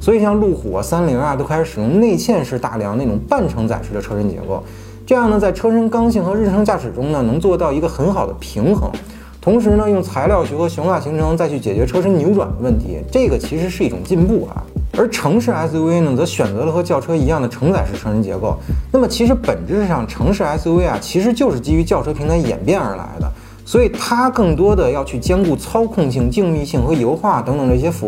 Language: Chinese